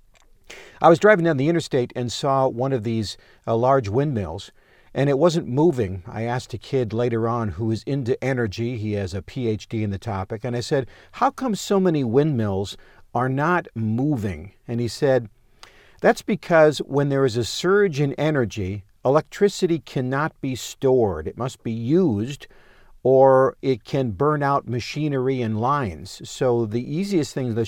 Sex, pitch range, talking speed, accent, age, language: male, 115-145 Hz, 170 wpm, American, 50-69, English